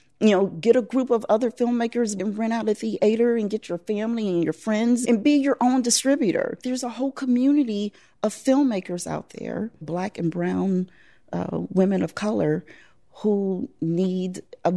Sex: female